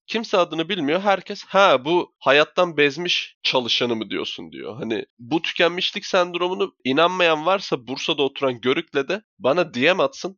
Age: 20-39